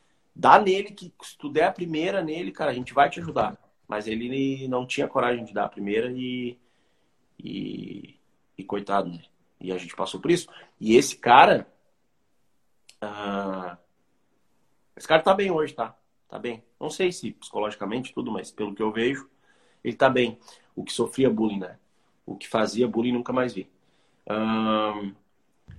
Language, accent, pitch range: Portuguese, Brazilian, 110-170 Hz